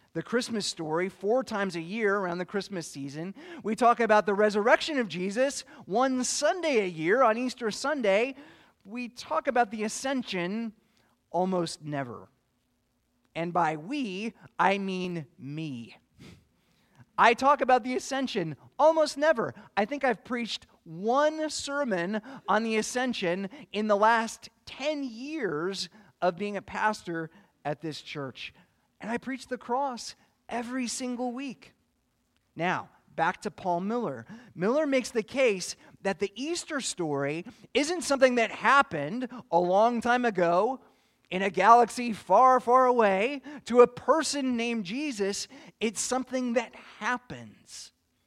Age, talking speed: 30-49, 135 wpm